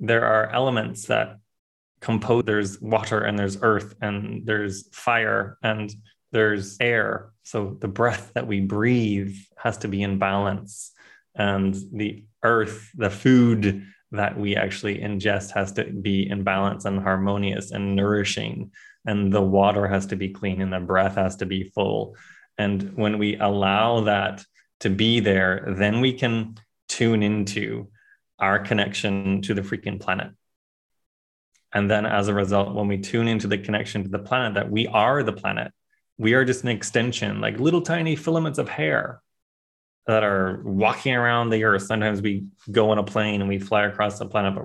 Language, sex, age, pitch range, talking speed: English, male, 20-39, 100-115 Hz, 170 wpm